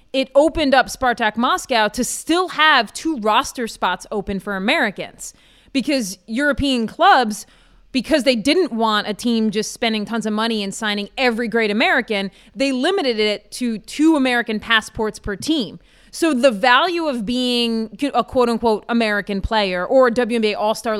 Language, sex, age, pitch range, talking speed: English, female, 30-49, 220-270 Hz, 155 wpm